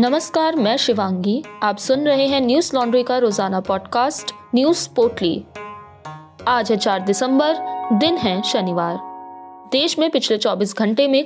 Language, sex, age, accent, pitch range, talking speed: Hindi, female, 20-39, native, 195-265 Hz, 145 wpm